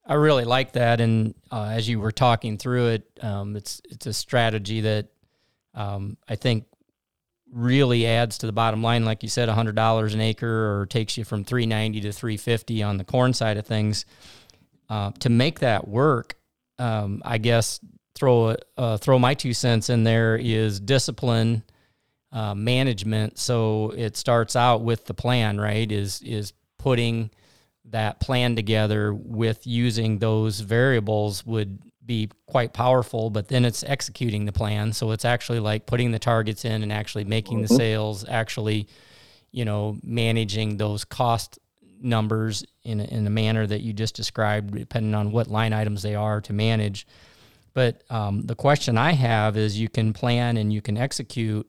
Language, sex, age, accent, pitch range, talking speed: English, male, 40-59, American, 105-120 Hz, 175 wpm